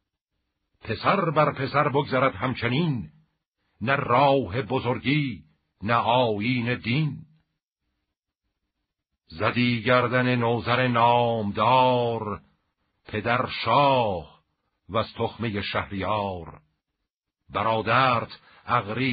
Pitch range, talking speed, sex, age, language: 95-125 Hz, 65 wpm, male, 50-69, Persian